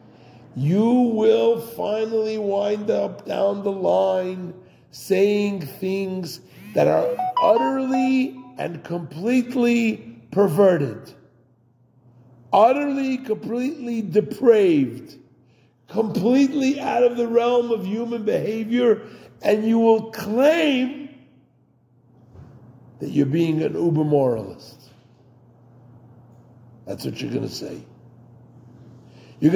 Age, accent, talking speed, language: 50-69, American, 85 wpm, English